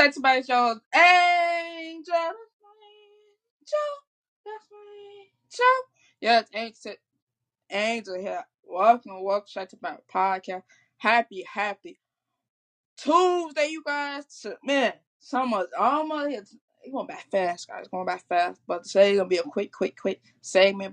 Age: 20-39